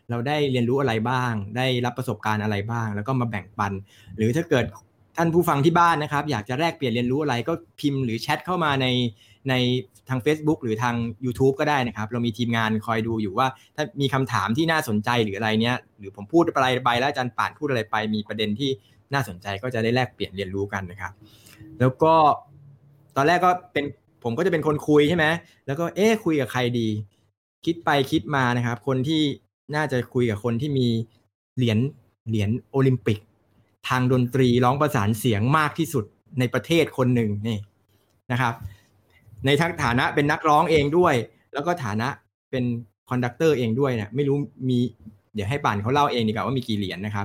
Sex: male